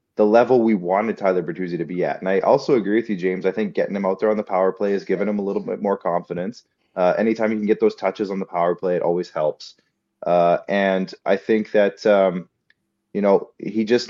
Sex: male